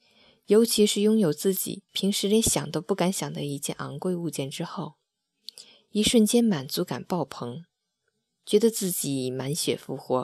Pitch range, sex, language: 145-195 Hz, female, Chinese